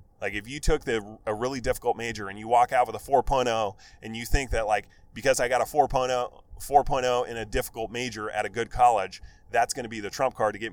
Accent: American